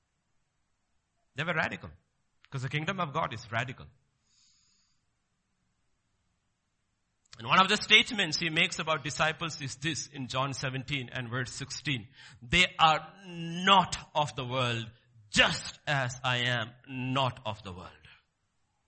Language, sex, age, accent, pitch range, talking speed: English, male, 50-69, Indian, 130-195 Hz, 125 wpm